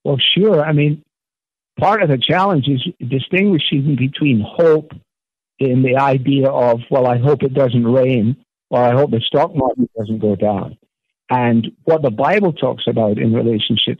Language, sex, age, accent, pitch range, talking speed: English, male, 60-79, American, 125-155 Hz, 165 wpm